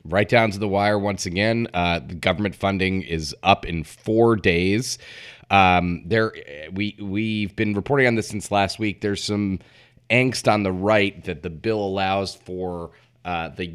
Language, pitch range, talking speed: English, 90-110 Hz, 180 wpm